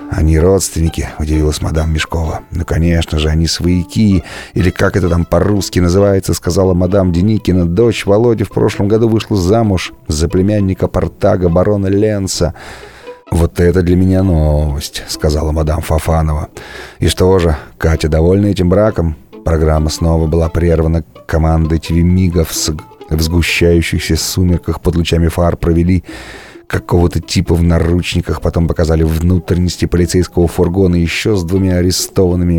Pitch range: 80-95 Hz